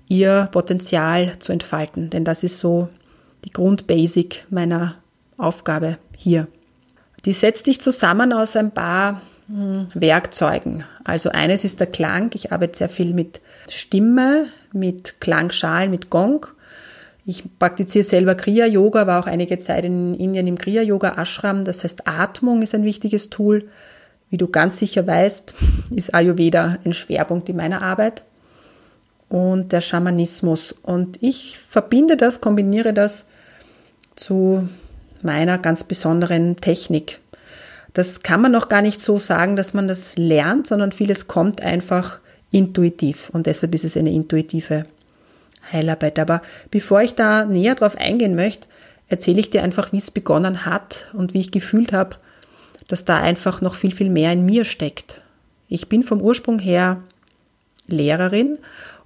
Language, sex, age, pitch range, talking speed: German, female, 30-49, 170-210 Hz, 145 wpm